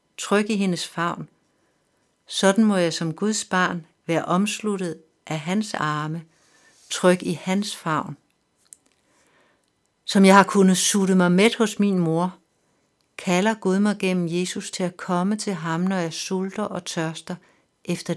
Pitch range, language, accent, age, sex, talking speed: 165-190 Hz, Danish, native, 60-79, female, 150 wpm